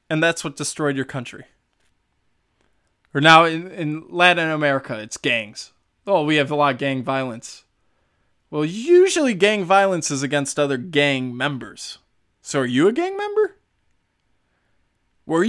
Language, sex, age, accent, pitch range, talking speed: English, male, 20-39, American, 140-215 Hz, 145 wpm